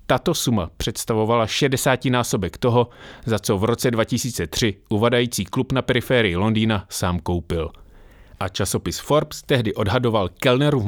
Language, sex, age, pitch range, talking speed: English, male, 30-49, 100-130 Hz, 130 wpm